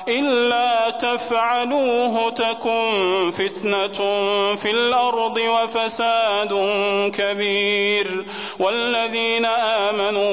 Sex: male